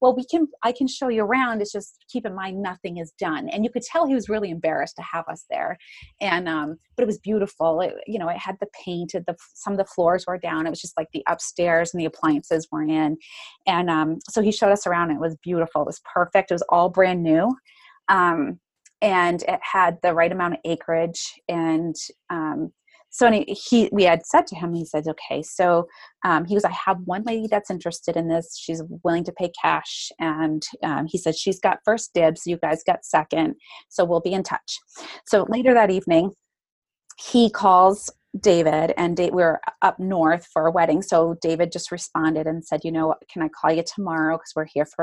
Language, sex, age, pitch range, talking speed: English, female, 30-49, 165-215 Hz, 220 wpm